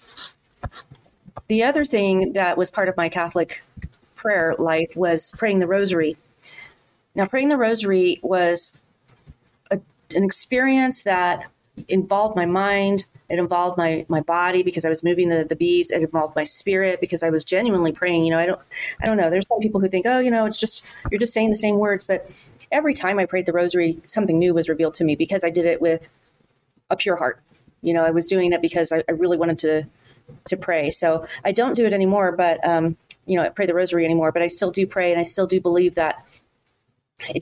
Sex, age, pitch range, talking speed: female, 30-49, 165-195 Hz, 210 wpm